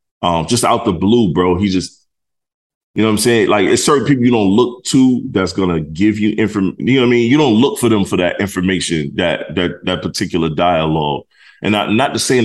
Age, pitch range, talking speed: 20-39, 85-115 Hz, 235 wpm